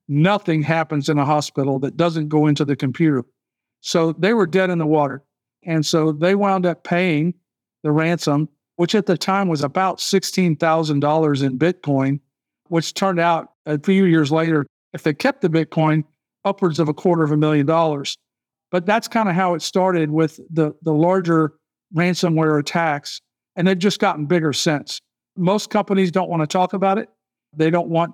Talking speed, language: 180 wpm, English